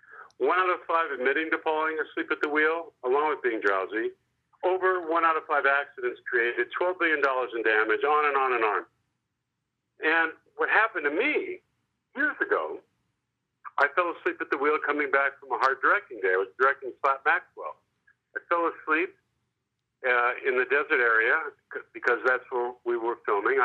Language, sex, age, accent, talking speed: English, male, 50-69, American, 180 wpm